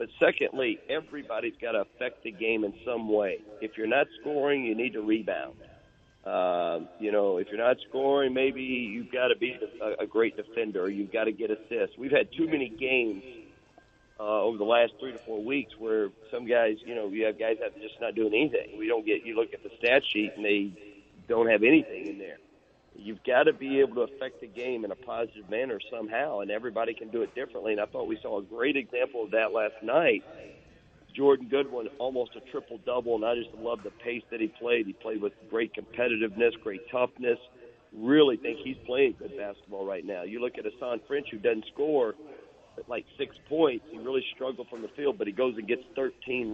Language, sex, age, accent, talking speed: English, male, 50-69, American, 215 wpm